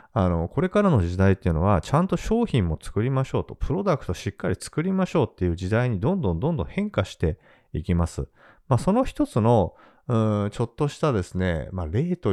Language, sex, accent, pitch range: Japanese, male, native, 90-140 Hz